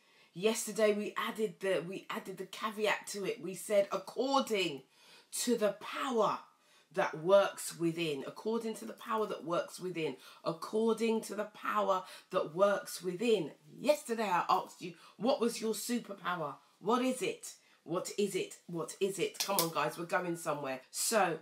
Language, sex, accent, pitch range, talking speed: English, female, British, 170-220 Hz, 155 wpm